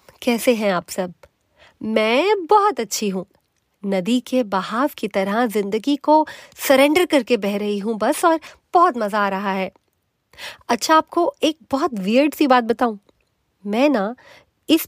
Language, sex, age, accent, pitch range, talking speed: Hindi, female, 30-49, native, 200-290 Hz, 155 wpm